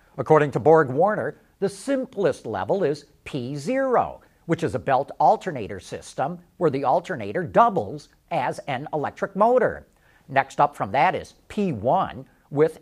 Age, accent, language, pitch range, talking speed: 50-69, American, English, 150-200 Hz, 140 wpm